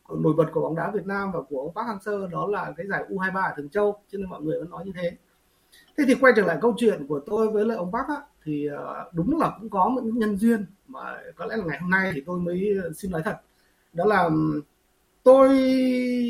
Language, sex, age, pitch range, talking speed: Vietnamese, male, 30-49, 175-230 Hz, 240 wpm